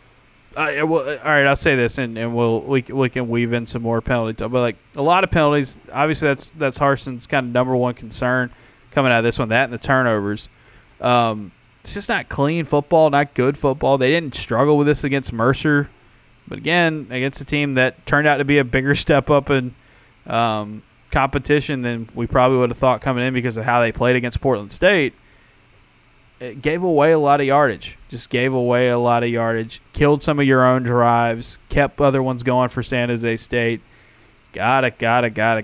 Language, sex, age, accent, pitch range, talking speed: English, male, 20-39, American, 115-140 Hz, 205 wpm